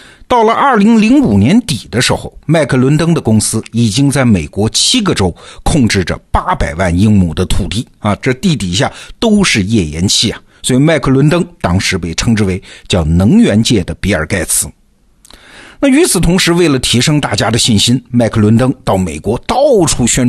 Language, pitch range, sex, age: Chinese, 100-165 Hz, male, 50-69